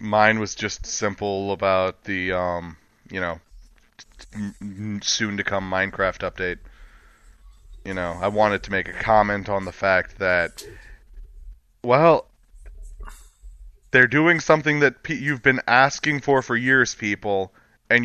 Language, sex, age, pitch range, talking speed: English, male, 30-49, 100-125 Hz, 125 wpm